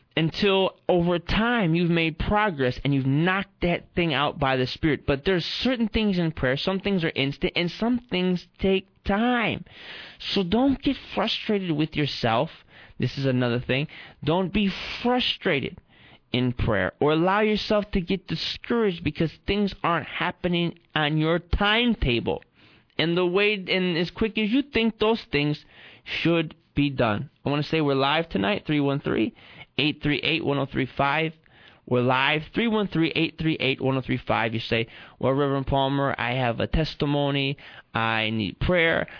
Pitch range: 130-185 Hz